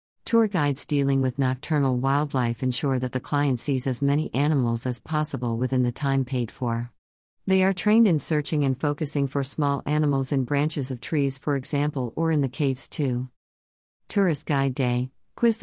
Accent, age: American, 50-69